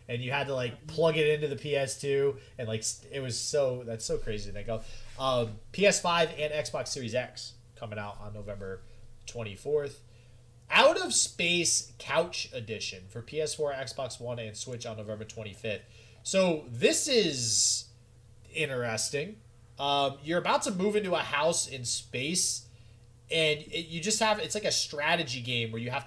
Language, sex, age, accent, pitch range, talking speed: English, male, 30-49, American, 115-145 Hz, 165 wpm